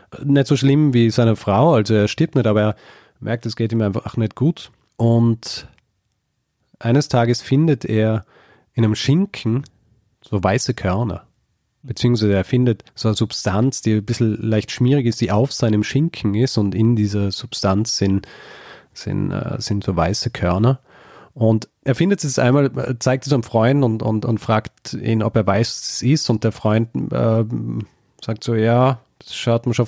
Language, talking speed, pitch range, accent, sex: German, 175 wpm, 105-125 Hz, German, male